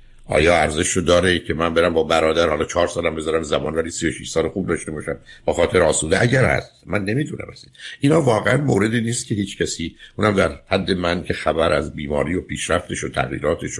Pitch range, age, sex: 80-110 Hz, 60-79, male